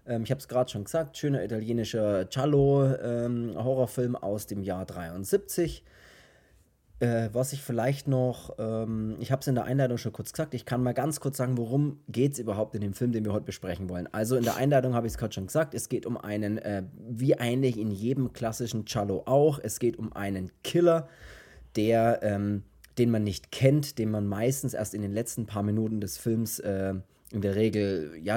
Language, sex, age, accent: German, male, 20-39, German